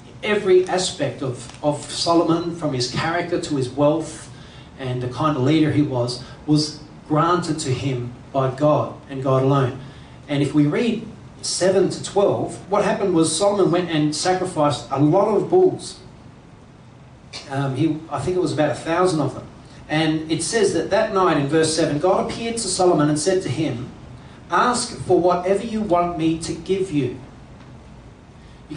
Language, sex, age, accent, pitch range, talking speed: English, male, 40-59, Australian, 140-180 Hz, 170 wpm